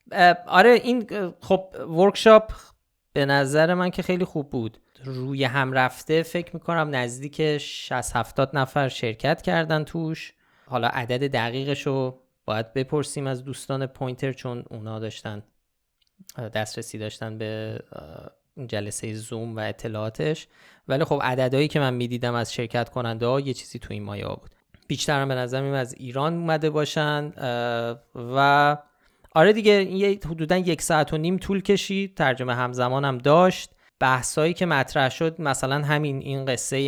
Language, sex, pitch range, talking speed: Persian, male, 120-155 Hz, 150 wpm